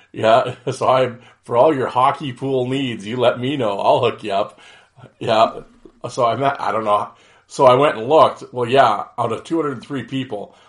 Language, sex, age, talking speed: English, male, 40-59, 195 wpm